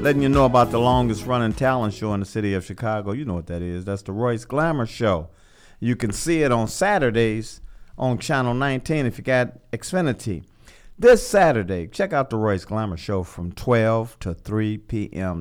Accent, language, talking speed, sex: American, English, 190 wpm, male